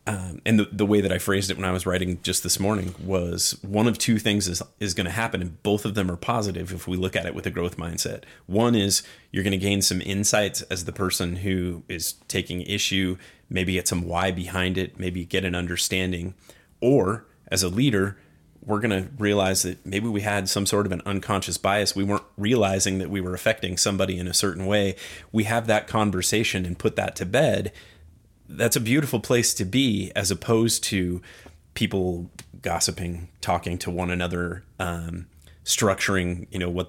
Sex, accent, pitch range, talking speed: male, American, 90-105 Hz, 200 wpm